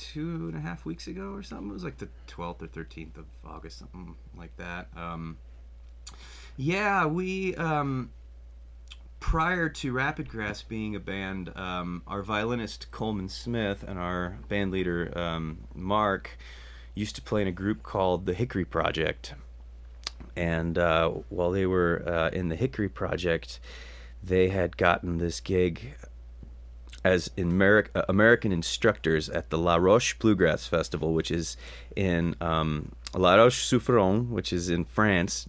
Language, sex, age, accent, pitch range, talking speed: English, male, 30-49, American, 75-100 Hz, 145 wpm